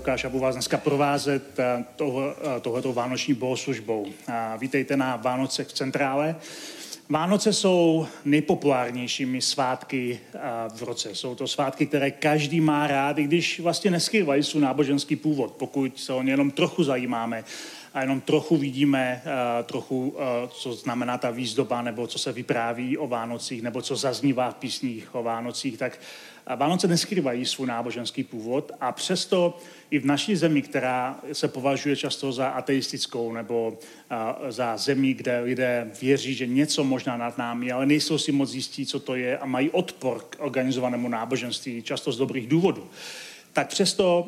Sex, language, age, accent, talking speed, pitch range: male, Czech, 30-49, native, 150 wpm, 125-150 Hz